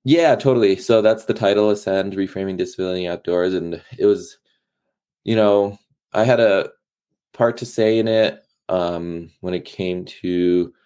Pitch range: 85-105 Hz